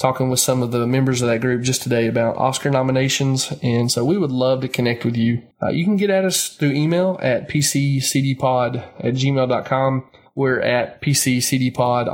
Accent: American